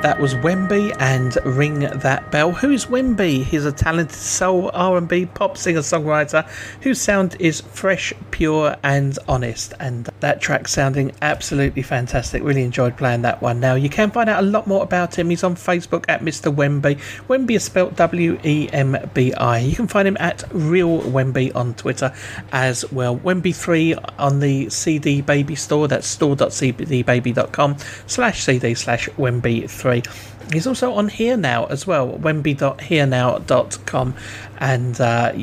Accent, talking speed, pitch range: British, 155 wpm, 130-175 Hz